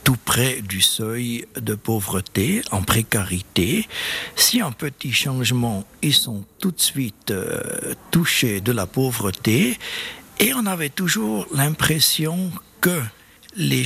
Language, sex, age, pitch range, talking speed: French, male, 60-79, 115-180 Hz, 125 wpm